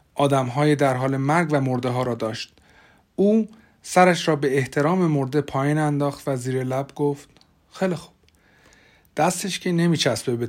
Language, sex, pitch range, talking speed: Persian, male, 130-155 Hz, 160 wpm